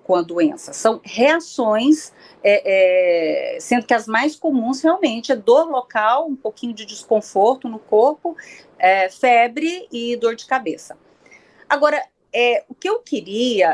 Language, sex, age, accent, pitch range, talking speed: Portuguese, female, 40-59, Brazilian, 205-270 Hz, 150 wpm